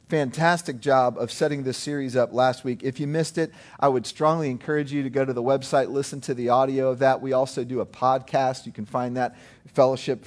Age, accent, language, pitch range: 40-59, American, English, 130-160 Hz